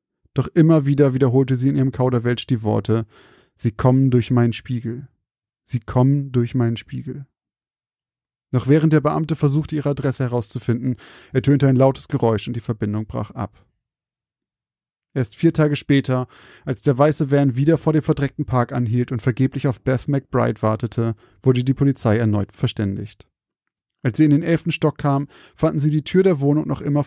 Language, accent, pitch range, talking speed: German, German, 120-145 Hz, 170 wpm